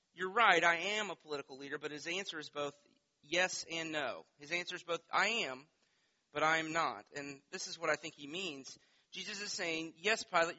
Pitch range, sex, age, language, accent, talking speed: 140-185 Hz, male, 30-49, English, American, 215 wpm